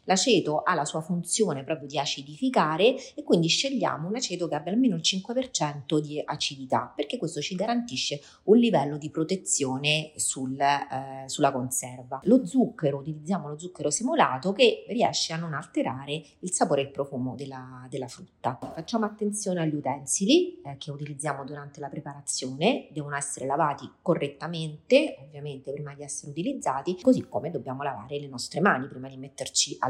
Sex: female